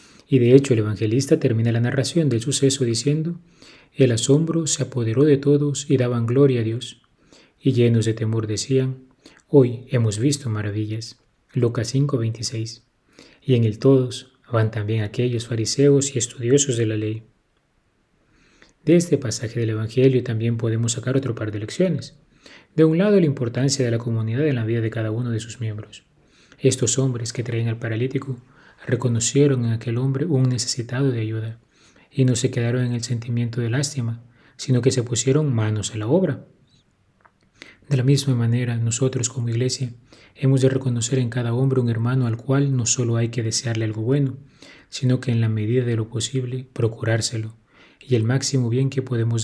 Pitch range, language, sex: 115-135 Hz, Spanish, male